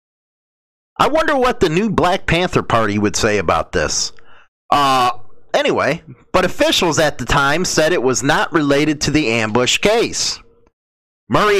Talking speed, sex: 150 wpm, male